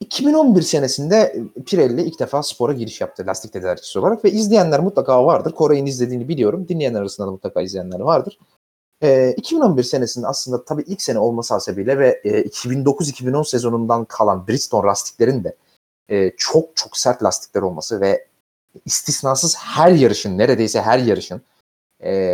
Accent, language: native, Turkish